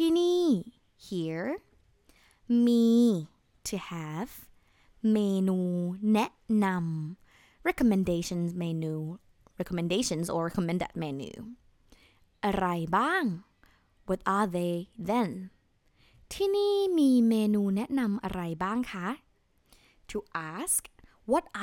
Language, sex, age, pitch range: Thai, female, 20-39, 180-250 Hz